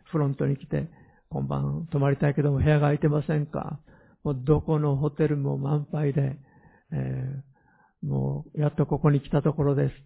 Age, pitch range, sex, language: 50-69, 135-160 Hz, male, Japanese